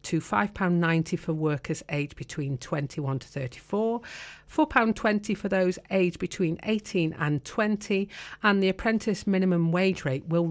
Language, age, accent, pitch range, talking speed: English, 40-59, British, 145-200 Hz, 135 wpm